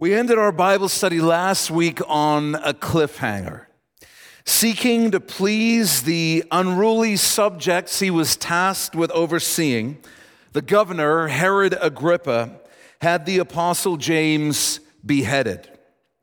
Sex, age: male, 40-59